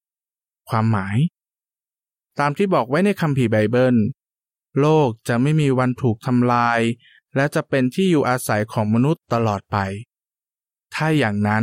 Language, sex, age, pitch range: Thai, male, 20-39, 115-150 Hz